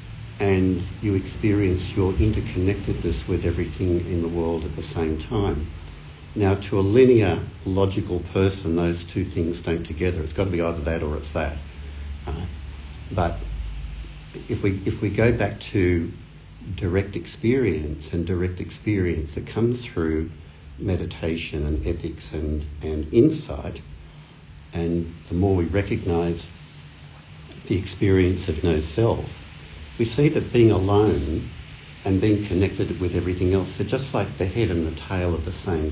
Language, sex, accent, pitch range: English, male, Australian, 80-100 Hz